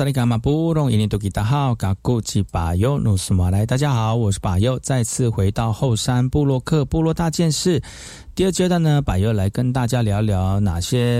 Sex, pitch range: male, 100-135 Hz